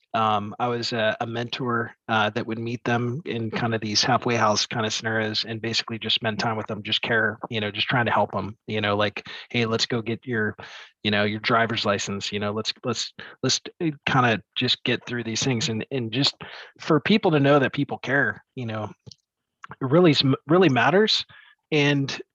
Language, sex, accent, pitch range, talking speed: English, male, American, 110-135 Hz, 210 wpm